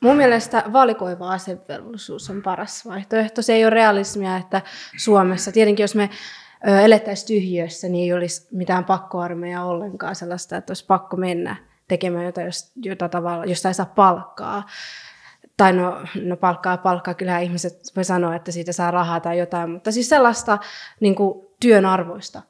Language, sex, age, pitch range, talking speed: Finnish, female, 20-39, 180-210 Hz, 155 wpm